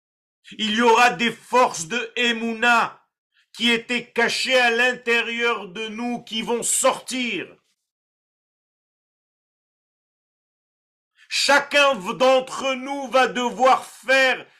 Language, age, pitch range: French, 50-69, 225-260 Hz